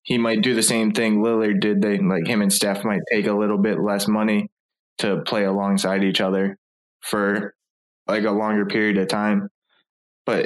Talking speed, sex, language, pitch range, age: 190 wpm, male, English, 100-115 Hz, 20-39